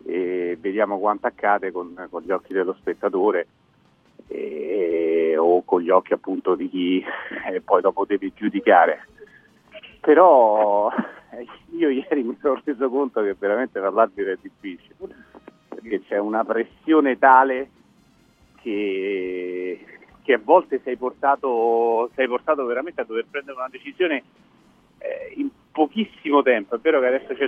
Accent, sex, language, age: native, male, Italian, 40-59